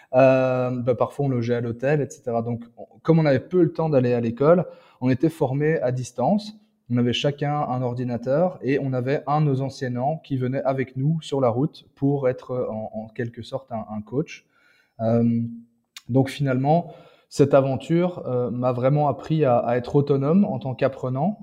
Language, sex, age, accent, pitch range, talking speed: French, male, 20-39, French, 120-145 Hz, 190 wpm